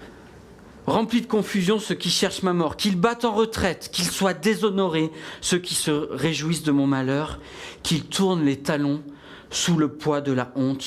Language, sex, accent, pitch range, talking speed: French, male, French, 150-225 Hz, 175 wpm